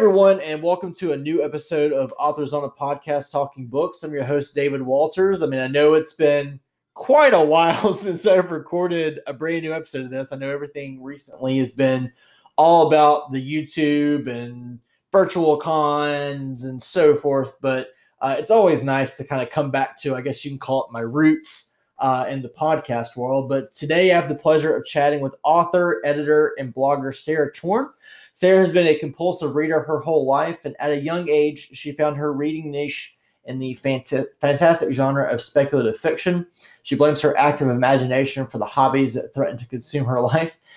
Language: English